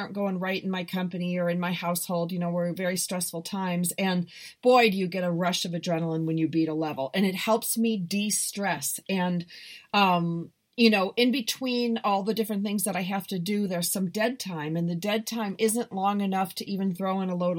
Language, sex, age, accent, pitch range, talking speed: English, female, 40-59, American, 175-220 Hz, 230 wpm